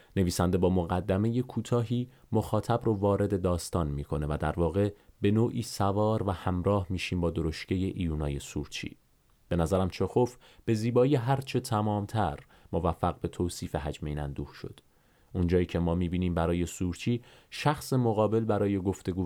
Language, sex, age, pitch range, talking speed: Persian, male, 30-49, 85-105 Hz, 145 wpm